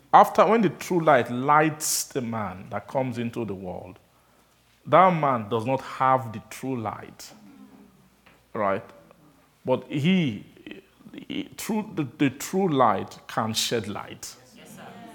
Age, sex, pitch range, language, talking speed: 50-69, male, 120-155 Hz, English, 125 wpm